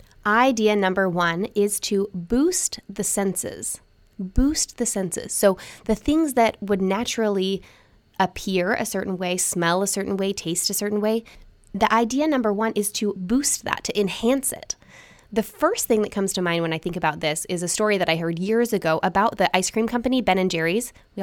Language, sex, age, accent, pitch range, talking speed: English, female, 20-39, American, 190-245 Hz, 195 wpm